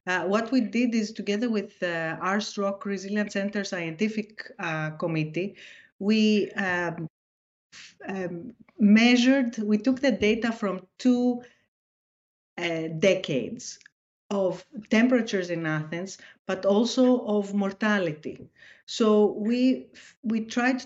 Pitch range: 180-225 Hz